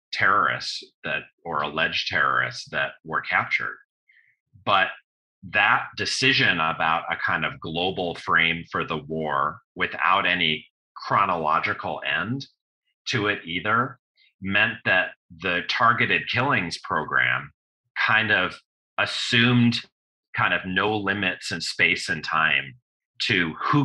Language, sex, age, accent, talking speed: English, male, 30-49, American, 115 wpm